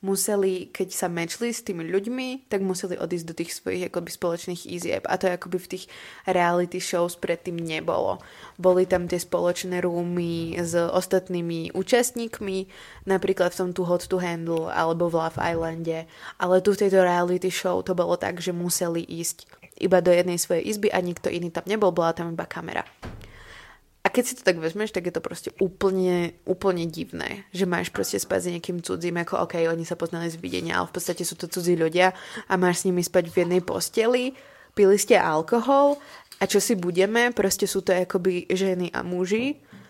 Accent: native